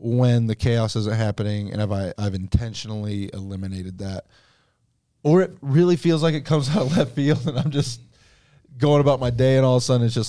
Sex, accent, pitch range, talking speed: male, American, 105-125 Hz, 210 wpm